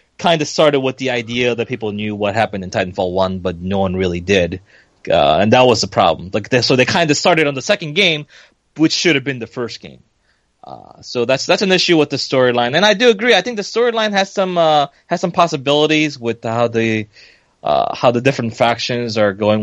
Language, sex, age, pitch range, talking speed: English, male, 20-39, 110-155 Hz, 230 wpm